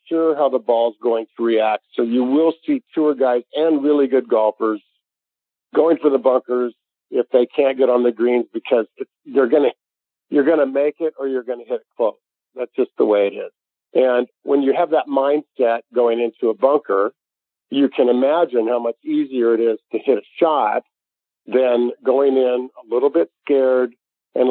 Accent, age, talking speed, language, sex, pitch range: American, 50-69, 200 wpm, English, male, 120-145 Hz